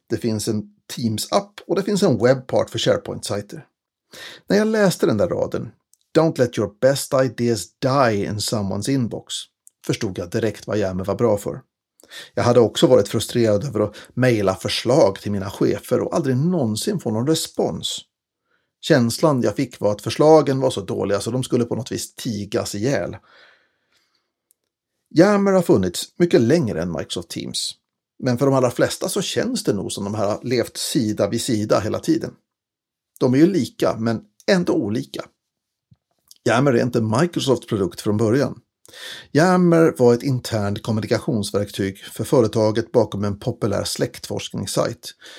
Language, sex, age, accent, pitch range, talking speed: Swedish, male, 60-79, native, 105-135 Hz, 160 wpm